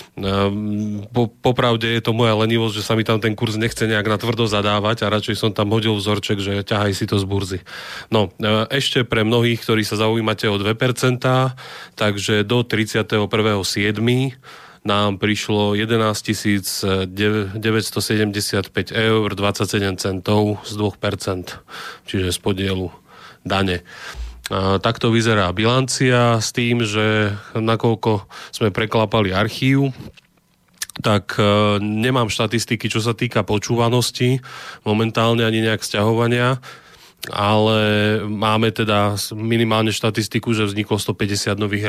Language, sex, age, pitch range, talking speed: Slovak, male, 30-49, 105-115 Hz, 120 wpm